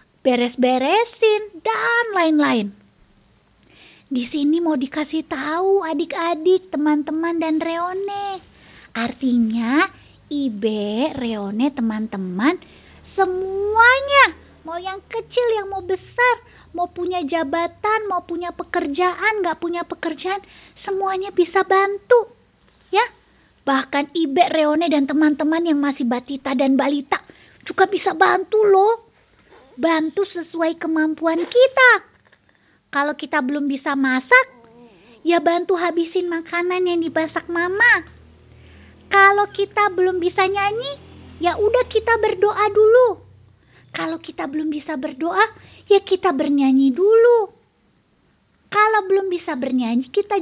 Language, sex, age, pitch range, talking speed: Indonesian, female, 20-39, 295-400 Hz, 105 wpm